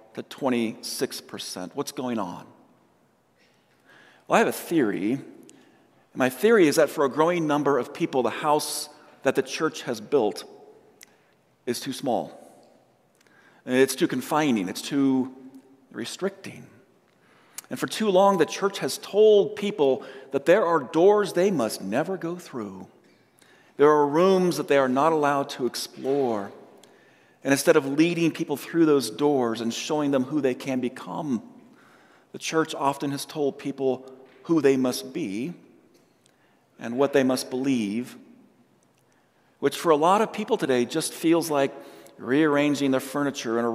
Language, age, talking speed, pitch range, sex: English, 40-59, 150 wpm, 130-160 Hz, male